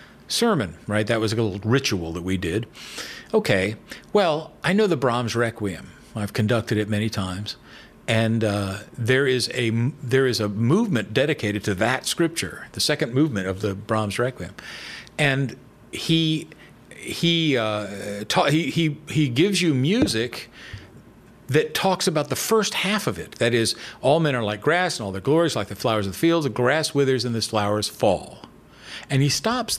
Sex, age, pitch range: male, 50-69, 110-155 Hz